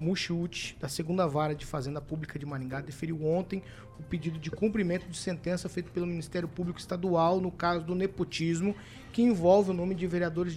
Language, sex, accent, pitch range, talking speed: Portuguese, male, Brazilian, 140-180 Hz, 180 wpm